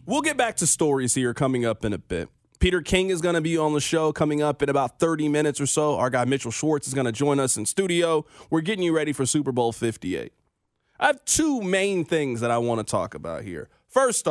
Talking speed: 250 wpm